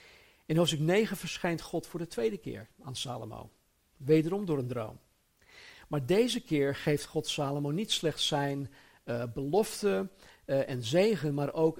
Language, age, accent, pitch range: Dutch, 50-69, Dutch, 125-160 Hz